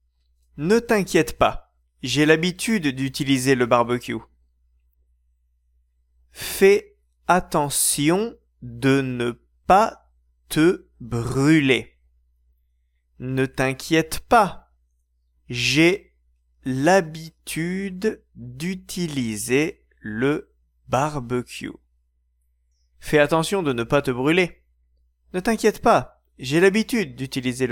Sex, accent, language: male, French, Japanese